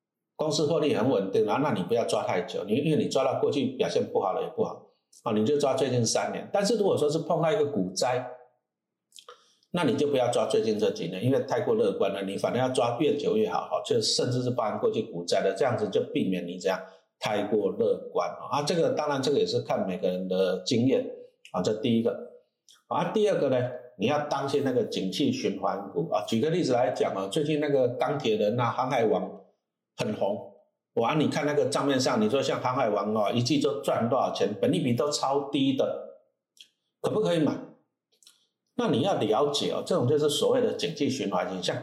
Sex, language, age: male, Chinese, 50-69